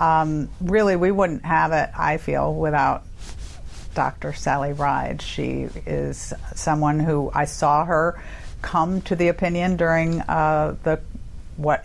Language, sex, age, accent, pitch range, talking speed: English, female, 50-69, American, 150-175 Hz, 135 wpm